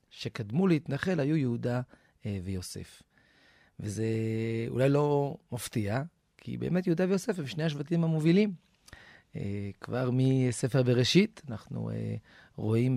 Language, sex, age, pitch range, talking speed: Hebrew, male, 40-59, 110-150 Hz, 100 wpm